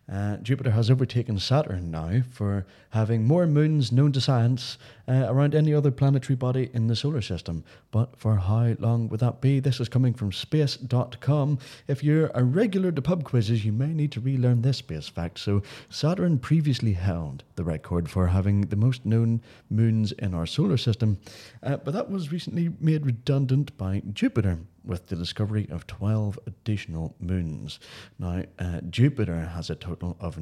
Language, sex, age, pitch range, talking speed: English, male, 30-49, 105-145 Hz, 175 wpm